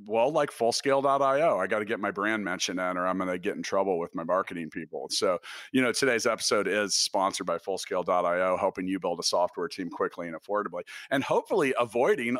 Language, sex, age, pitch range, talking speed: English, male, 40-59, 105-130 Hz, 210 wpm